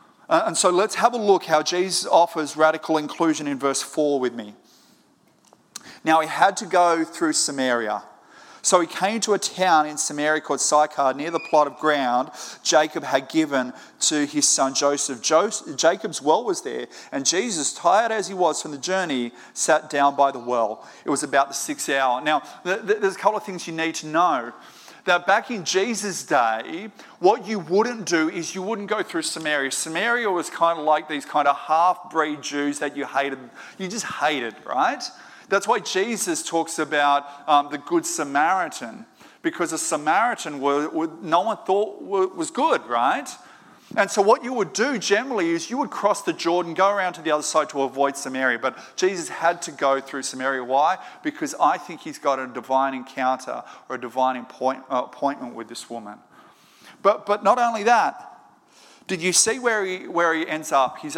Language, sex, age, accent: English, male, 40-59, Australian